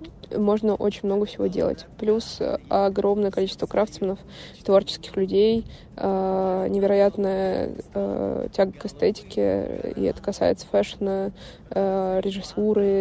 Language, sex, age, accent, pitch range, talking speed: Russian, female, 20-39, native, 195-215 Hz, 90 wpm